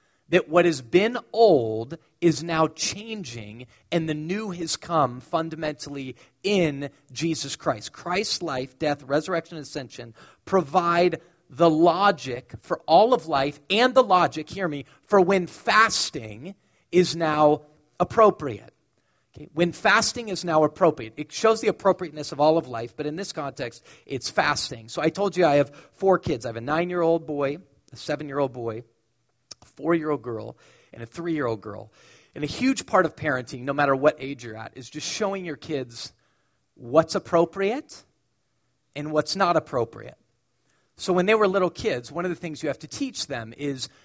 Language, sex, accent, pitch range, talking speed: English, male, American, 135-175 Hz, 165 wpm